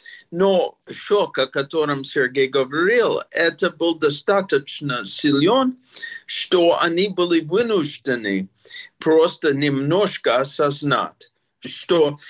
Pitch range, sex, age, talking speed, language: 145-200 Hz, male, 50-69, 90 wpm, Russian